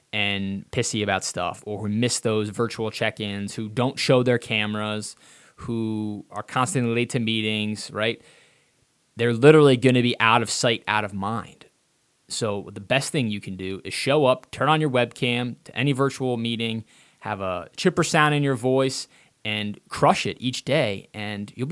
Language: English